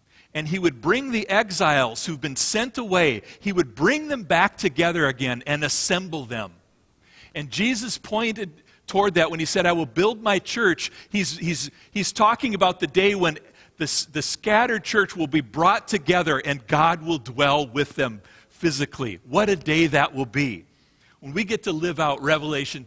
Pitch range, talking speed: 125-175 Hz, 180 wpm